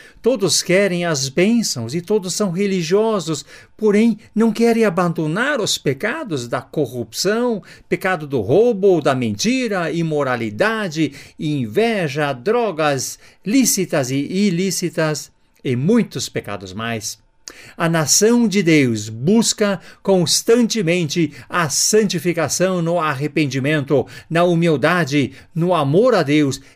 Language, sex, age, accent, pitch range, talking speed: Portuguese, male, 50-69, Brazilian, 140-195 Hz, 105 wpm